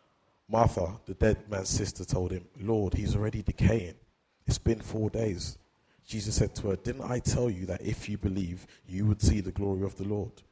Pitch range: 90-105 Hz